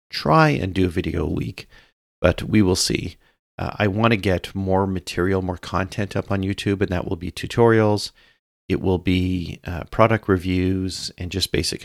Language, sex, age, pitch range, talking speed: English, male, 40-59, 85-100 Hz, 185 wpm